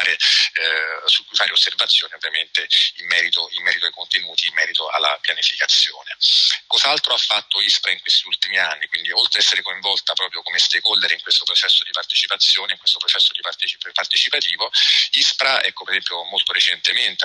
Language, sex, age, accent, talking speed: Italian, male, 40-59, native, 170 wpm